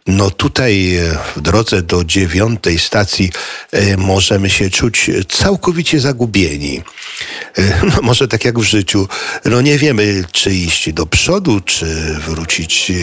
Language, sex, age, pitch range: Polish, male, 50-69, 95-115 Hz